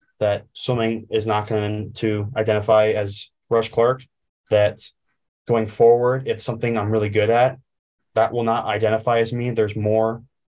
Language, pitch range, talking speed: English, 105-120 Hz, 155 wpm